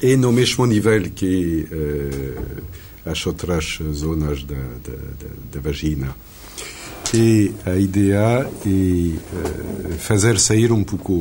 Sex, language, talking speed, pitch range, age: male, Portuguese, 130 wpm, 75-105 Hz, 60-79